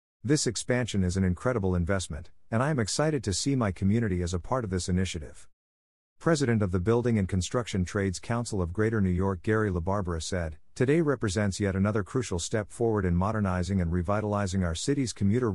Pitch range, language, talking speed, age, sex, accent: 90-115 Hz, English, 190 wpm, 50-69, male, American